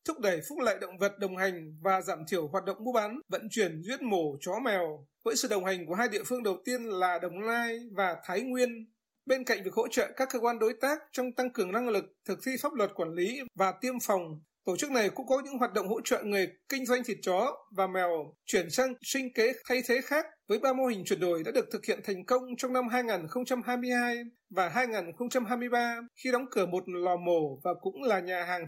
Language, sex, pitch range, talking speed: Vietnamese, male, 190-250 Hz, 235 wpm